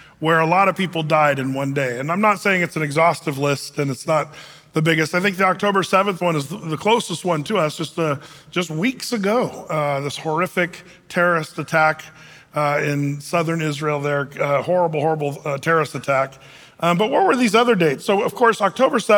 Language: English